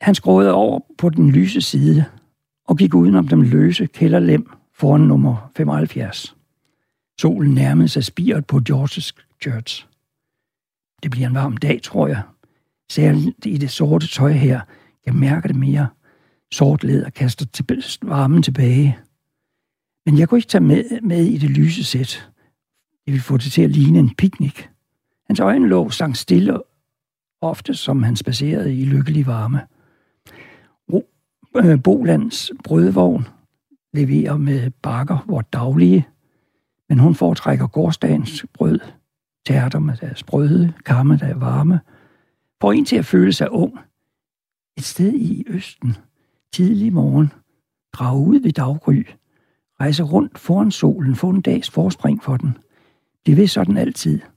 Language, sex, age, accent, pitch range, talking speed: Danish, male, 60-79, native, 130-160 Hz, 140 wpm